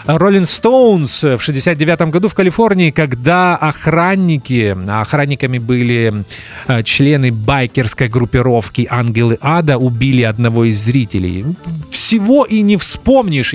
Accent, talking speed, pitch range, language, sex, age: native, 105 wpm, 120-160 Hz, Russian, male, 30-49